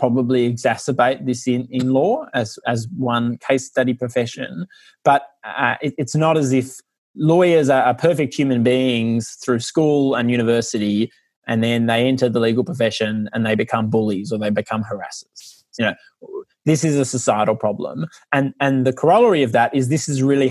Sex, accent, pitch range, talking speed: male, Australian, 115-145 Hz, 175 wpm